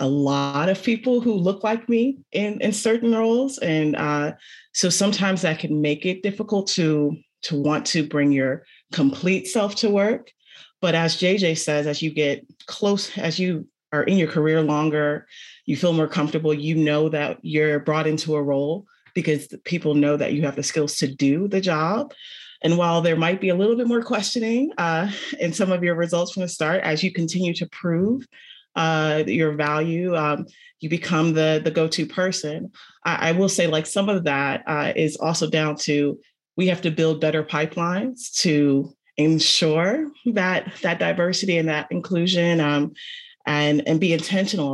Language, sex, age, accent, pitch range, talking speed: English, female, 30-49, American, 155-195 Hz, 180 wpm